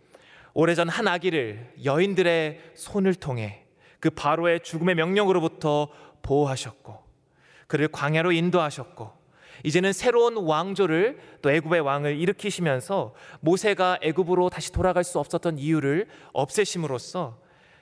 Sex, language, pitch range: male, Korean, 130-190 Hz